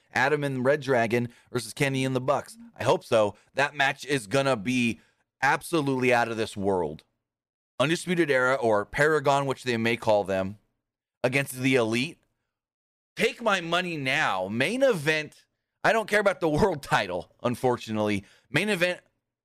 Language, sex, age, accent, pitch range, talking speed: English, male, 30-49, American, 115-150 Hz, 155 wpm